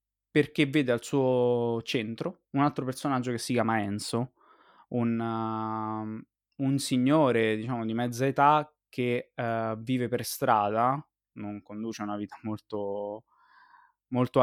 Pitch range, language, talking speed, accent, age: 115-140 Hz, Italian, 120 wpm, native, 20-39